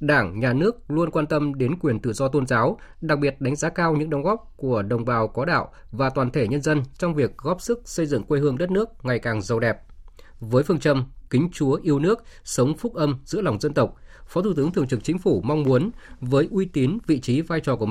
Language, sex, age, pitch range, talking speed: Vietnamese, male, 20-39, 120-160 Hz, 250 wpm